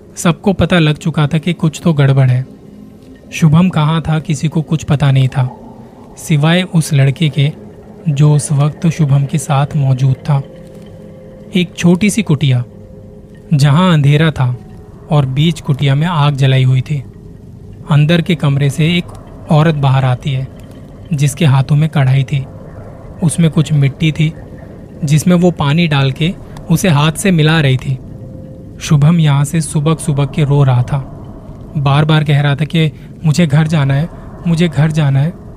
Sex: male